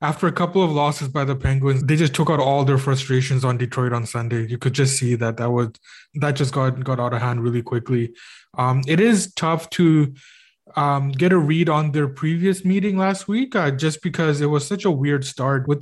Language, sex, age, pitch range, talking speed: English, male, 20-39, 130-150 Hz, 230 wpm